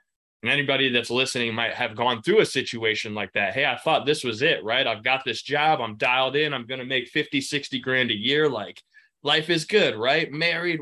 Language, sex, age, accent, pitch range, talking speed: English, male, 20-39, American, 115-150 Hz, 225 wpm